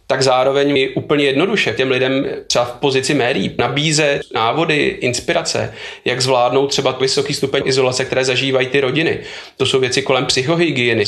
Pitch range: 130-155 Hz